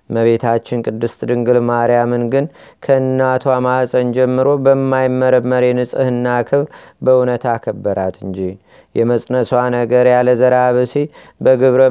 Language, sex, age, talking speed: Amharic, male, 30-49, 100 wpm